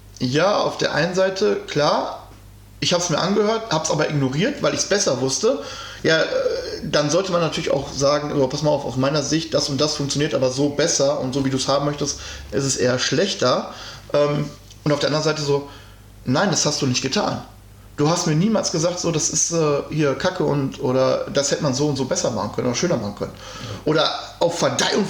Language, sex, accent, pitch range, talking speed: German, male, German, 135-195 Hz, 220 wpm